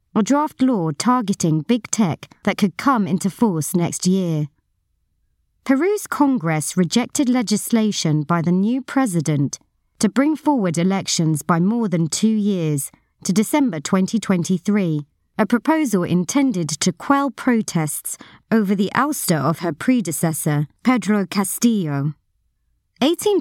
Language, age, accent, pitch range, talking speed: English, 30-49, British, 160-225 Hz, 125 wpm